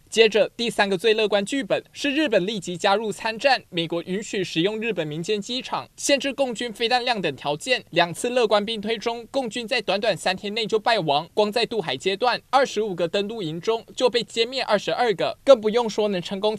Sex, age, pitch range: male, 20-39, 190-245 Hz